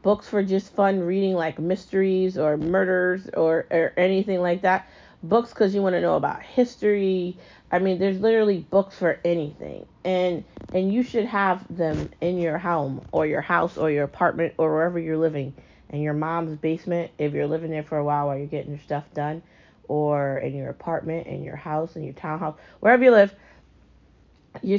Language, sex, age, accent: English, female, 30-49, American